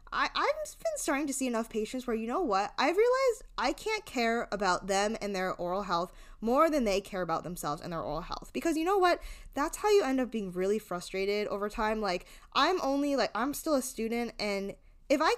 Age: 10-29